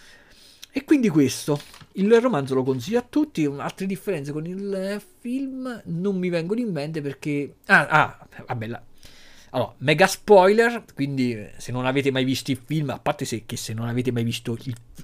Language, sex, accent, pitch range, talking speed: Italian, male, native, 120-165 Hz, 180 wpm